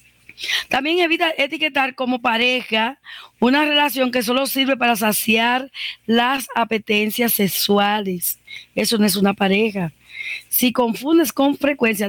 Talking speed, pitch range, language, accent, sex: 120 wpm, 215-280 Hz, Spanish, American, female